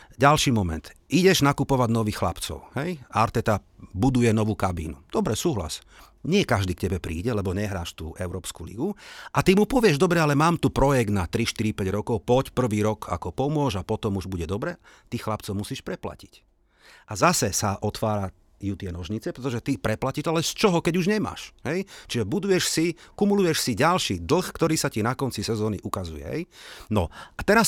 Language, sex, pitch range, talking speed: Slovak, male, 100-140 Hz, 185 wpm